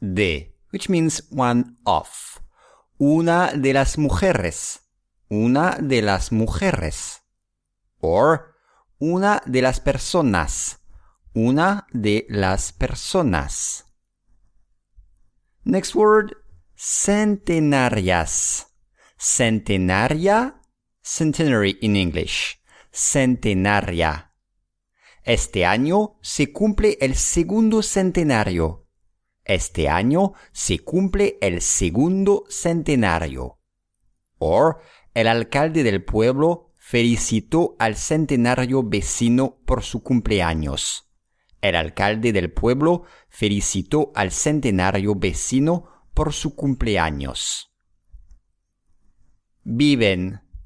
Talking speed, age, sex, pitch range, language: 80 wpm, 50-69, male, 90-150 Hz, English